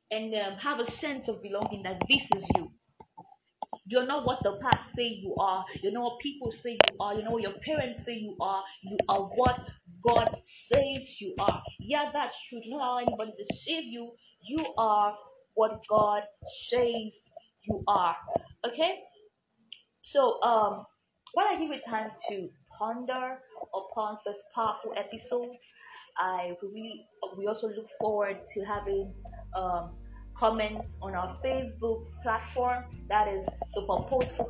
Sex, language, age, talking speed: female, English, 20-39, 155 wpm